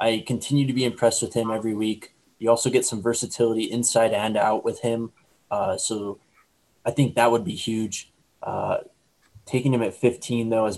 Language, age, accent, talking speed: English, 20-39, American, 190 wpm